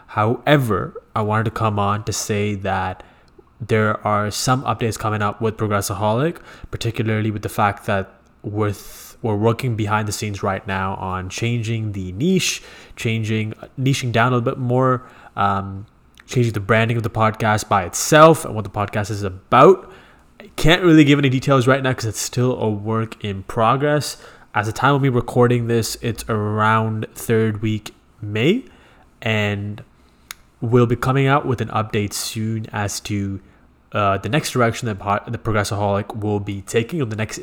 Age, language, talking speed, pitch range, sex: 20-39, English, 175 wpm, 105-120 Hz, male